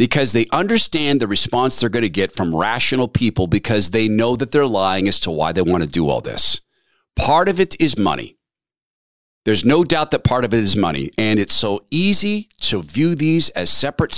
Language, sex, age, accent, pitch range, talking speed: English, male, 50-69, American, 110-165 Hz, 210 wpm